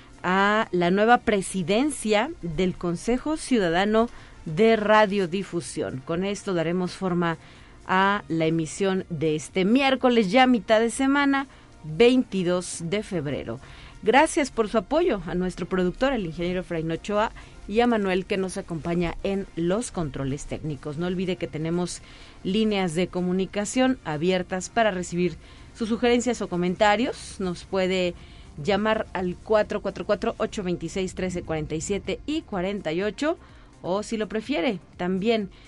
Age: 40-59